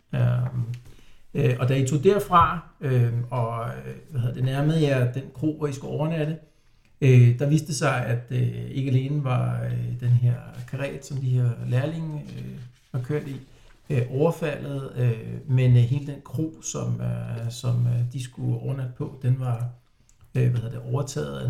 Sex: male